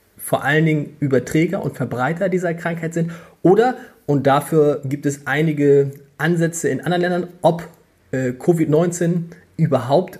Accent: German